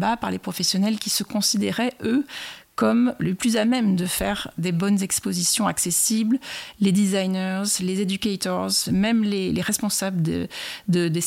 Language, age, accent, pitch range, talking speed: French, 30-49, French, 180-225 Hz, 145 wpm